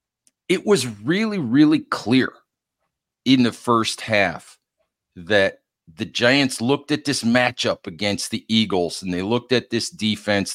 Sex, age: male, 40-59